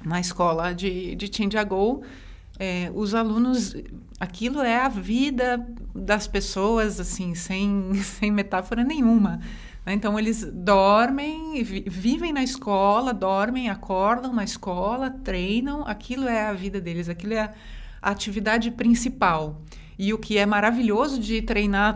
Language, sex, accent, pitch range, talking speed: Portuguese, female, Brazilian, 190-225 Hz, 130 wpm